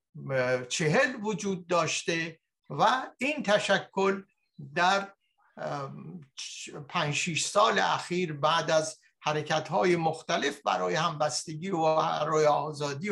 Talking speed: 85 wpm